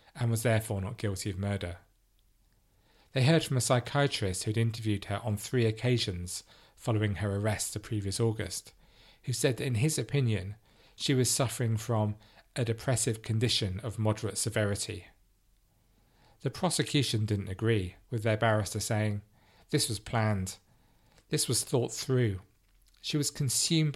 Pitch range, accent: 105-125 Hz, British